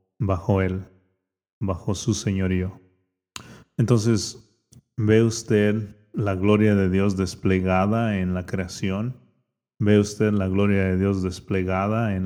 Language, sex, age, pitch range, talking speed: Dutch, male, 30-49, 95-110 Hz, 115 wpm